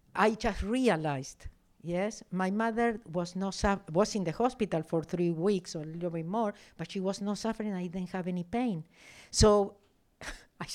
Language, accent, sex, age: English, Spanish, female, 60-79